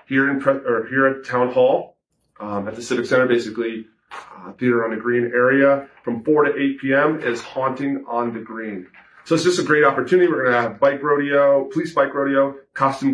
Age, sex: 30-49, male